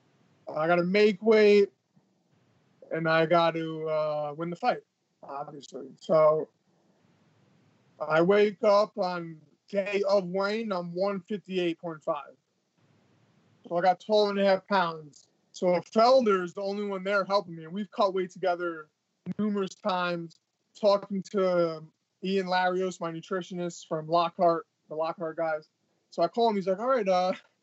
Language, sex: English, male